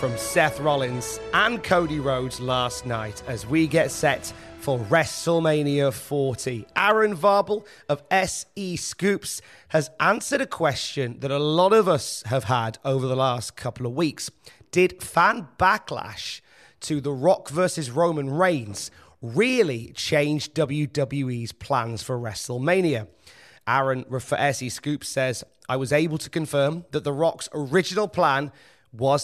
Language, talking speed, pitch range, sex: English, 140 wpm, 125-165 Hz, male